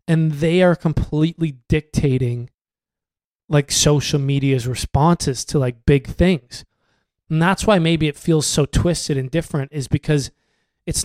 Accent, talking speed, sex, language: American, 140 wpm, male, English